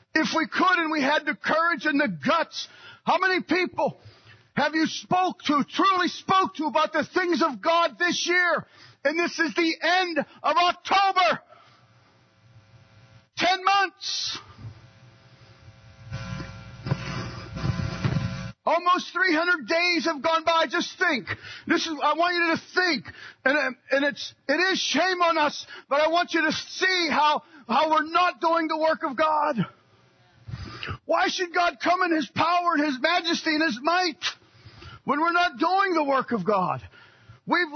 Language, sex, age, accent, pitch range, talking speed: English, male, 40-59, American, 295-350 Hz, 155 wpm